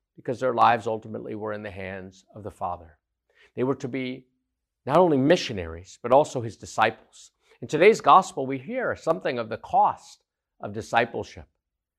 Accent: American